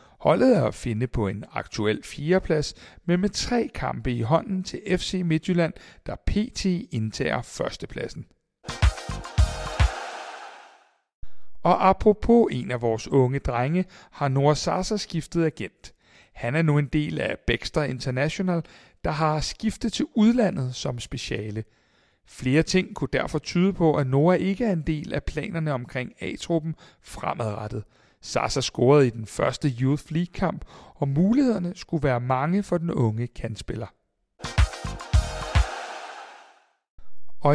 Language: Danish